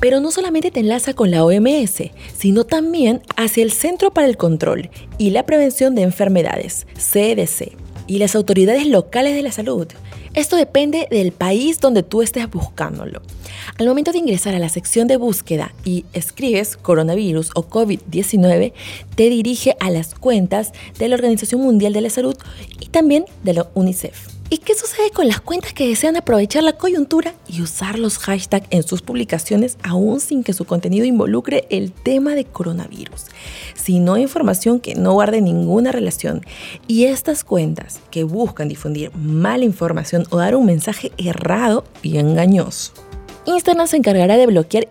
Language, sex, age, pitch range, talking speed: Spanish, female, 30-49, 180-255 Hz, 165 wpm